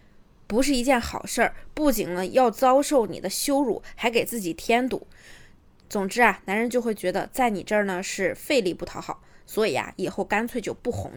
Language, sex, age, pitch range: Chinese, female, 20-39, 205-270 Hz